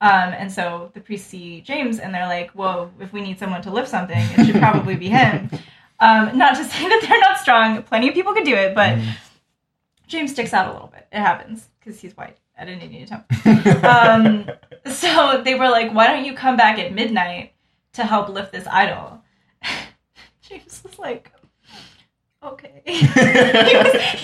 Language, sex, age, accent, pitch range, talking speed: English, female, 10-29, American, 185-250 Hz, 195 wpm